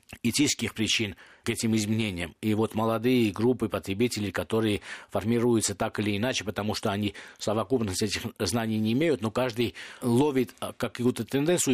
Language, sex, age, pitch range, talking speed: Russian, male, 50-69, 110-135 Hz, 145 wpm